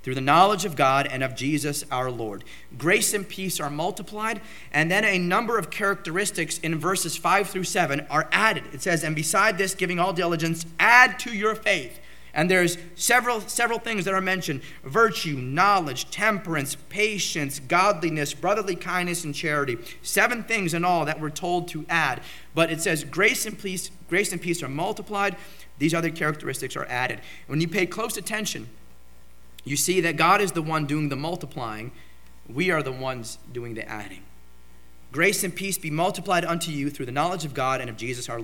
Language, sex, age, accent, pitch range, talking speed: English, male, 40-59, American, 130-180 Hz, 185 wpm